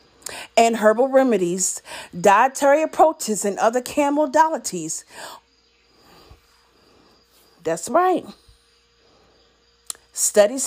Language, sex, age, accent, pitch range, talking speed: English, female, 40-59, American, 190-275 Hz, 65 wpm